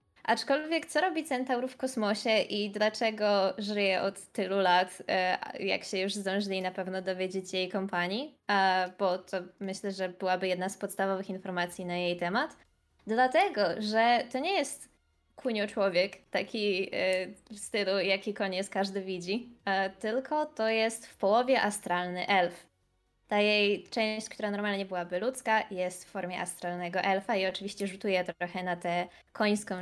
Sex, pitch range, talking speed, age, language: female, 185-225 Hz, 145 wpm, 20-39, Polish